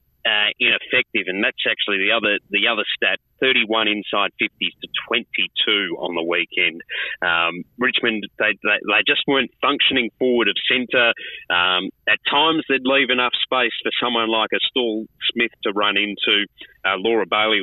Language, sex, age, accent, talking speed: English, male, 30-49, Australian, 165 wpm